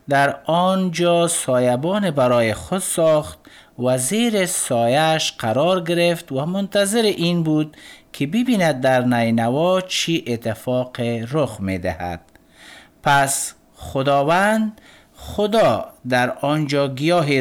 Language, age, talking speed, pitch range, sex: Persian, 50-69, 105 wpm, 125-175 Hz, male